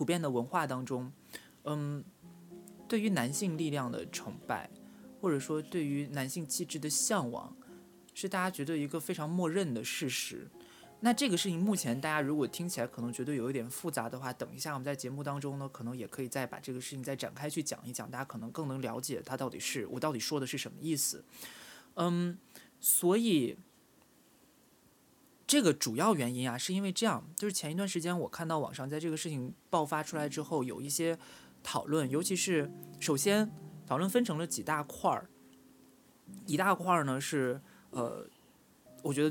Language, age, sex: Chinese, 20-39, male